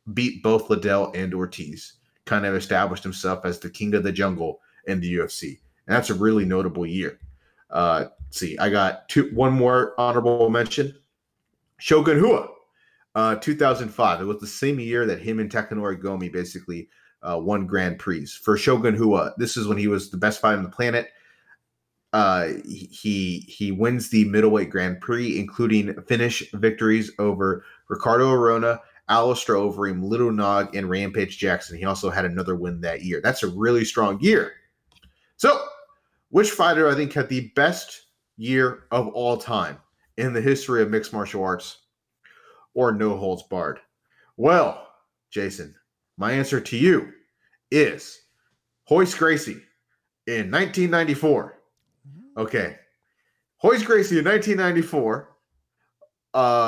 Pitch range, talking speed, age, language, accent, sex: 95-125 Hz, 150 wpm, 30-49, English, American, male